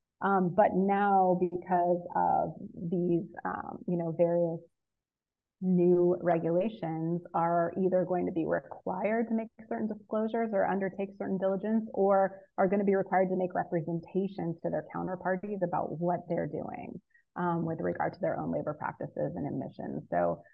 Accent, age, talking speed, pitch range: American, 30-49, 155 wpm, 175-205 Hz